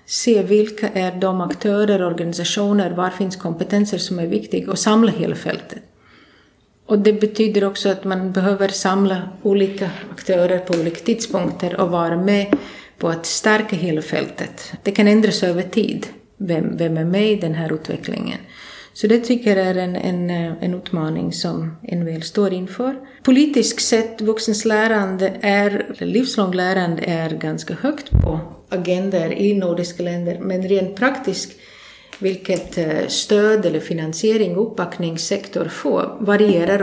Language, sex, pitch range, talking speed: Danish, female, 180-210 Hz, 140 wpm